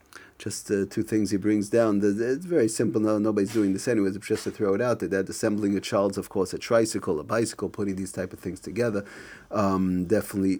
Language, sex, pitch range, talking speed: English, male, 95-110 Hz, 230 wpm